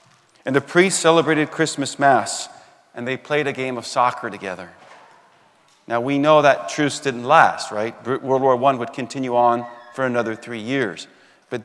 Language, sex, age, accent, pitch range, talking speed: English, male, 40-59, American, 125-145 Hz, 170 wpm